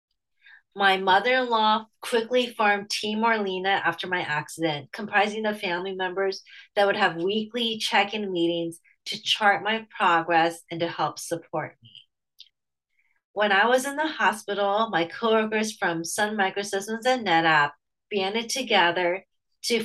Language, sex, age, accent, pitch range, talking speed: English, female, 40-59, American, 165-230 Hz, 135 wpm